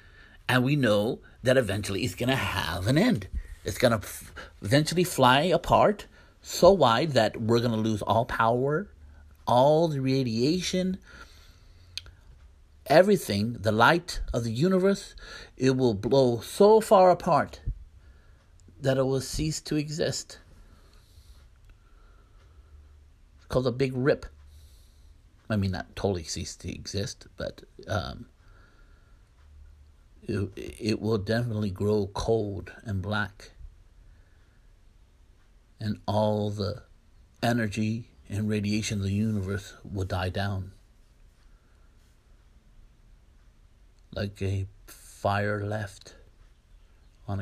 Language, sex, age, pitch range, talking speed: English, male, 50-69, 85-115 Hz, 110 wpm